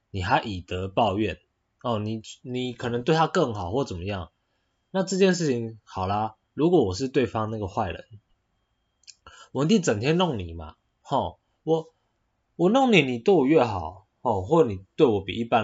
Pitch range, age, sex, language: 95-135 Hz, 20-39, male, Chinese